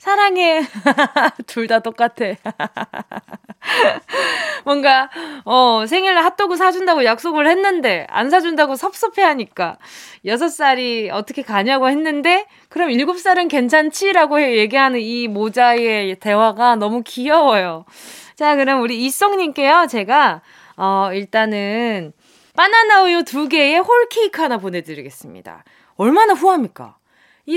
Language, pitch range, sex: Korean, 230-340 Hz, female